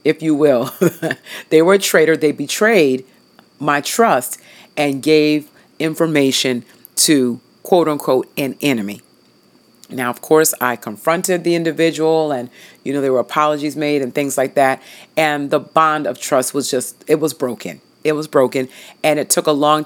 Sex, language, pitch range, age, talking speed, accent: female, English, 140-175 Hz, 40-59, 165 wpm, American